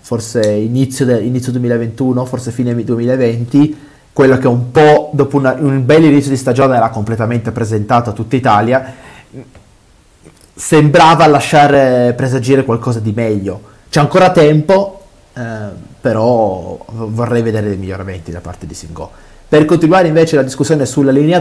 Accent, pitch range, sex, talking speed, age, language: native, 110-140 Hz, male, 145 wpm, 30-49, Italian